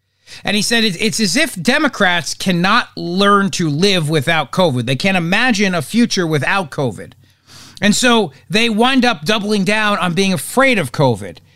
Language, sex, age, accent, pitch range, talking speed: English, male, 40-59, American, 140-225 Hz, 165 wpm